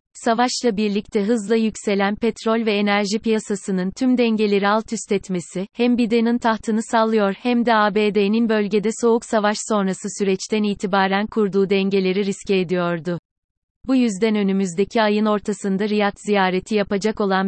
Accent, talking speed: native, 135 wpm